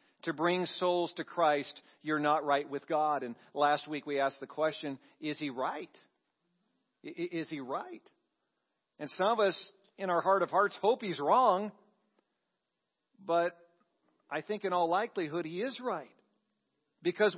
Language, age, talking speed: English, 50-69, 155 wpm